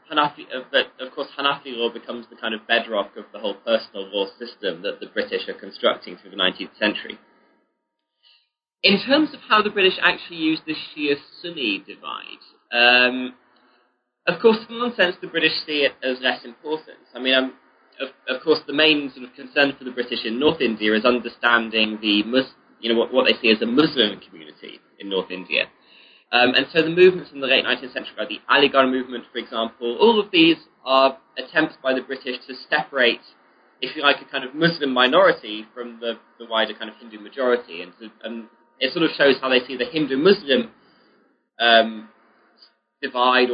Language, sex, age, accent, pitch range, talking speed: English, male, 20-39, British, 115-155 Hz, 190 wpm